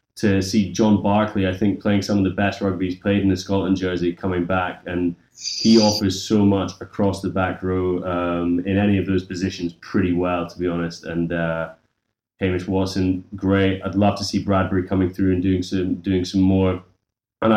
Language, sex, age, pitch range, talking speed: English, male, 20-39, 95-105 Hz, 200 wpm